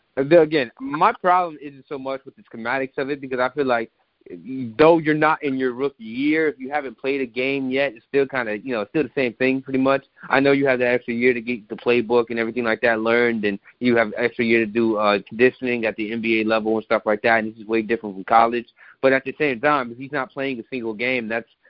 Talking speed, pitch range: 260 wpm, 115-140 Hz